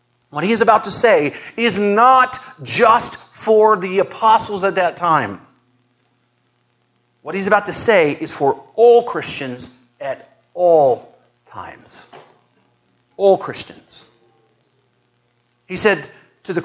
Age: 40-59